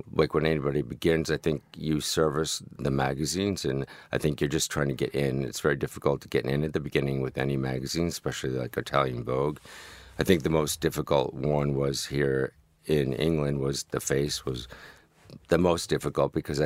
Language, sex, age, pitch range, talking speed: English, male, 50-69, 70-80 Hz, 190 wpm